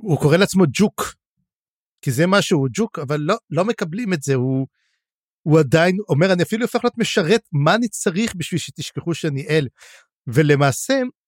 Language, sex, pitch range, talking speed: Hebrew, male, 150-200 Hz, 165 wpm